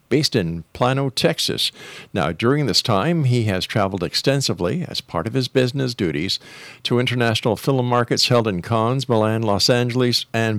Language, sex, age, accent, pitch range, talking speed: English, male, 50-69, American, 100-130 Hz, 165 wpm